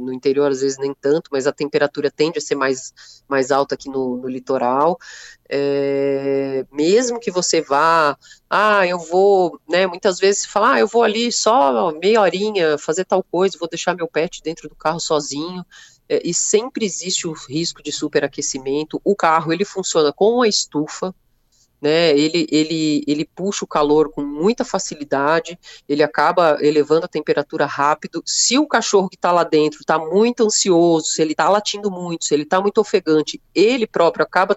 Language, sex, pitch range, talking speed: Portuguese, female, 140-180 Hz, 180 wpm